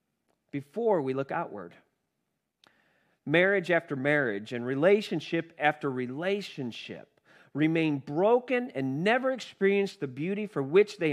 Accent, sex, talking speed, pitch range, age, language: American, male, 115 wpm, 135-195 Hz, 40-59, English